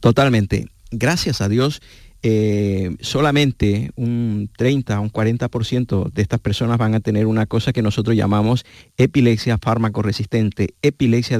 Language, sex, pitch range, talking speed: Spanish, male, 105-120 Hz, 135 wpm